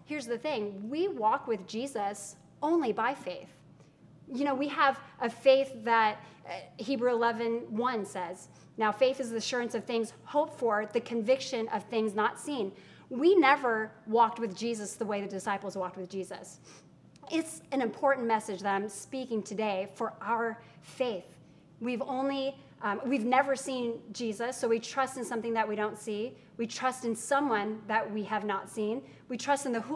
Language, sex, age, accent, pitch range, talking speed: English, female, 30-49, American, 215-265 Hz, 175 wpm